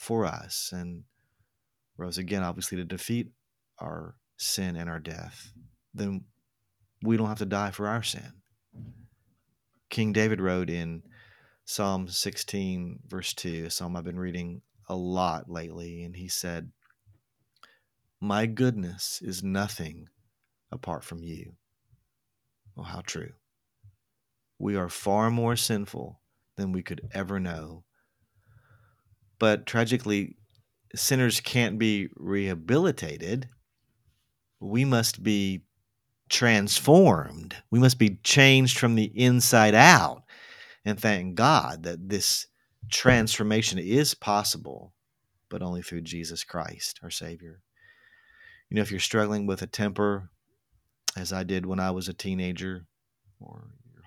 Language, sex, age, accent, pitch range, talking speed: English, male, 40-59, American, 90-115 Hz, 125 wpm